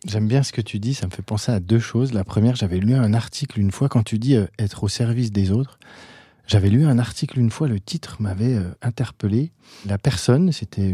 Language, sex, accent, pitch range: French, male, French, 105-135 Hz